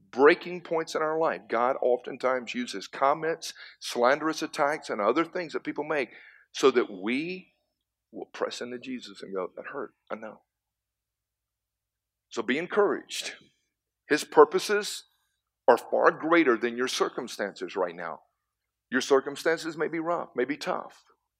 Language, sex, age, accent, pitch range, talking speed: English, male, 50-69, American, 110-175 Hz, 145 wpm